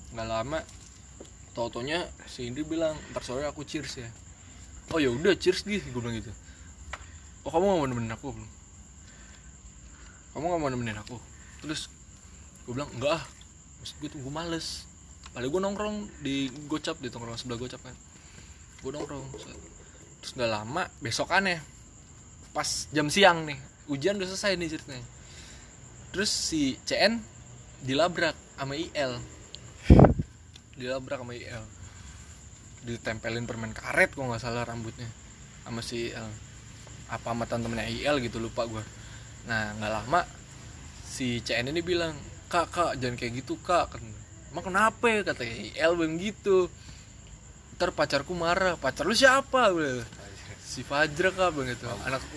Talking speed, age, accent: 140 wpm, 20-39, native